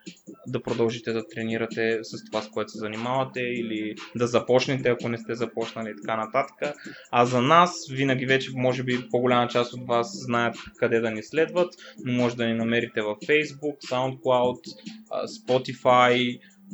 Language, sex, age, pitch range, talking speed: Bulgarian, male, 20-39, 115-135 Hz, 160 wpm